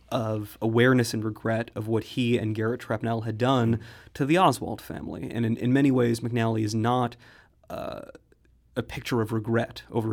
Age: 30-49